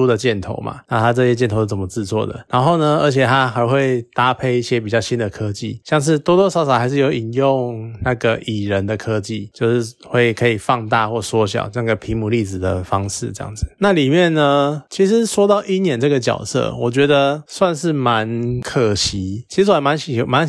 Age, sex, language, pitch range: 20-39, male, Chinese, 110-140 Hz